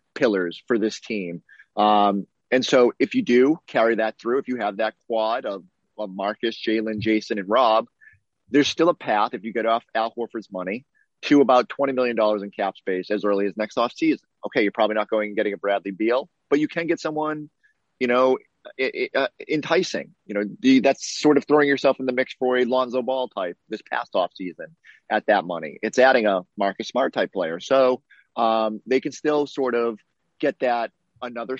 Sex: male